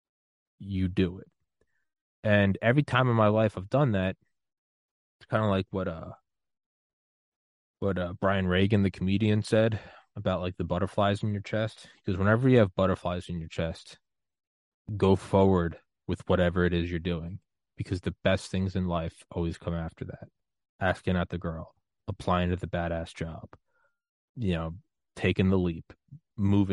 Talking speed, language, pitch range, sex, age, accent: 165 wpm, English, 85-100 Hz, male, 20-39, American